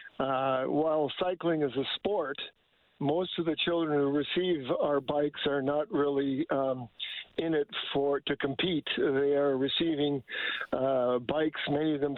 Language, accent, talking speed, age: English, American, 155 wpm, 50-69